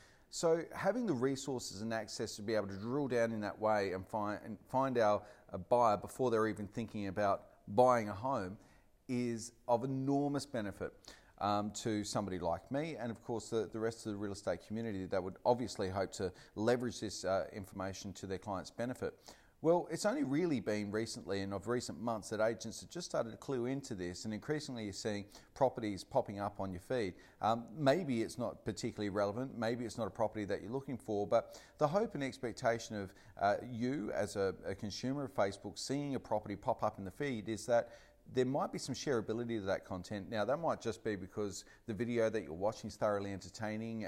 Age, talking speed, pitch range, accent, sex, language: 30-49, 205 wpm, 100-125 Hz, Australian, male, English